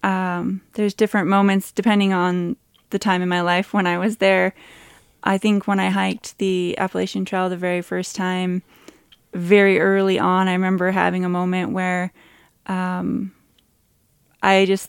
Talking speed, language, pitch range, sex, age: 155 wpm, Czech, 180-195 Hz, female, 20-39